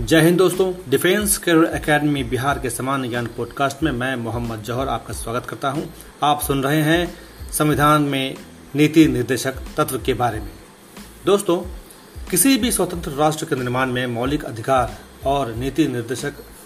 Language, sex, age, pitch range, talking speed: Hindi, male, 40-59, 125-160 Hz, 155 wpm